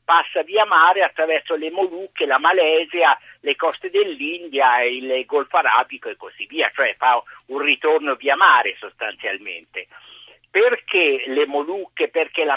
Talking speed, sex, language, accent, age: 140 wpm, male, Italian, native, 50-69